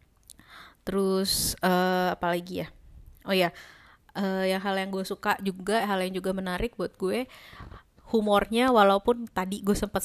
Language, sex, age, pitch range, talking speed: Indonesian, female, 20-39, 185-220 Hz, 150 wpm